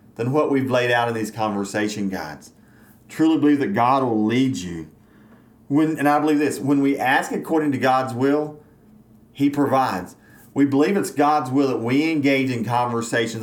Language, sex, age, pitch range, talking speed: English, male, 40-59, 115-140 Hz, 180 wpm